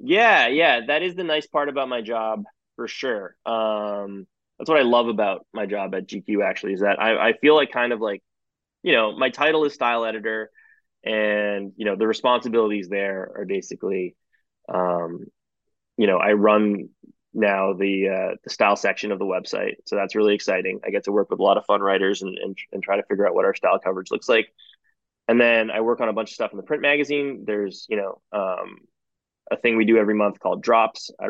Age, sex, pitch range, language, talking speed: 20-39, male, 100-125 Hz, English, 215 wpm